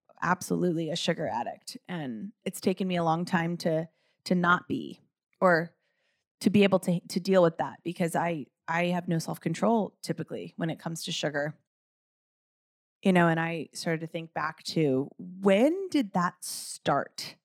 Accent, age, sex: American, 30-49, female